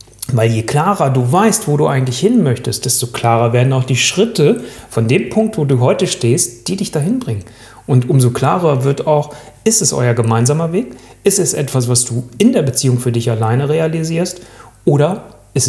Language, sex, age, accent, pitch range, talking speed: German, male, 30-49, German, 115-150 Hz, 195 wpm